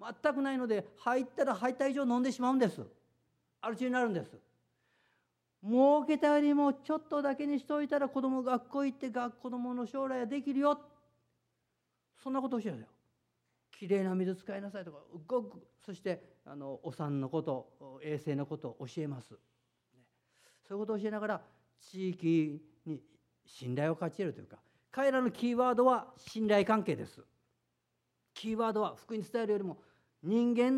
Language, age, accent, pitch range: Japanese, 50-69, native, 155-250 Hz